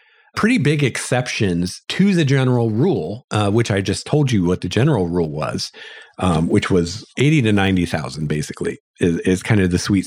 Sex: male